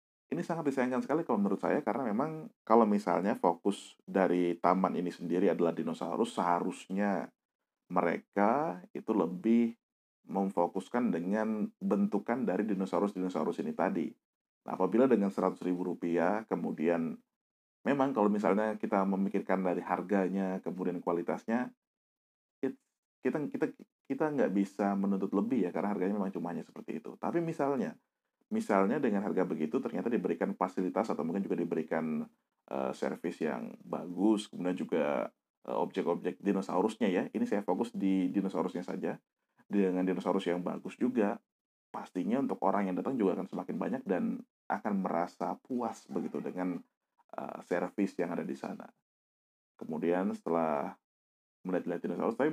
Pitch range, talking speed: 90-110 Hz, 135 wpm